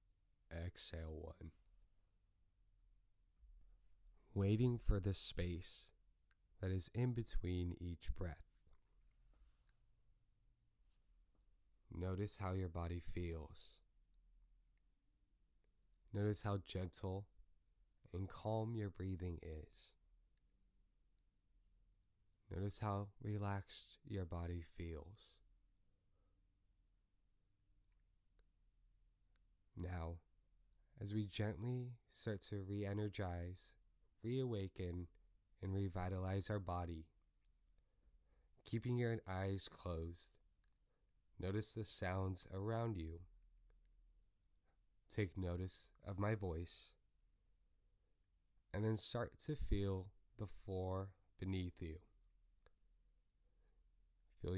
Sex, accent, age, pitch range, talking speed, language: male, American, 20-39, 90-105 Hz, 75 wpm, English